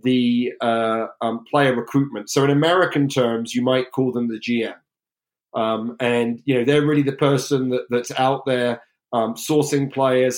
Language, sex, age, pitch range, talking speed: English, male, 30-49, 120-140 Hz, 170 wpm